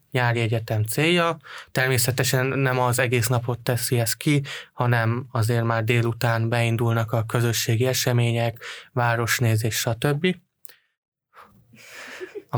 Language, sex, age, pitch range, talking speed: Hungarian, male, 20-39, 115-130 Hz, 105 wpm